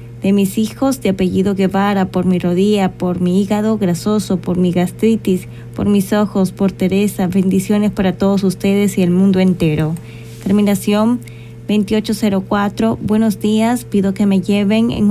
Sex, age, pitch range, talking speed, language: female, 20-39, 185-210 Hz, 150 wpm, Spanish